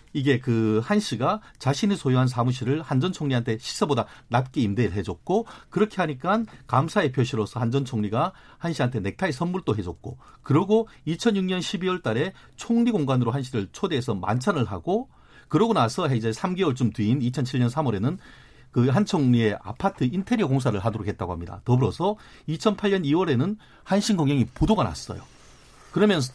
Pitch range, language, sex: 120-185 Hz, Korean, male